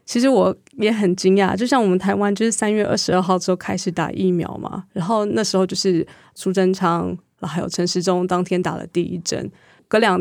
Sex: female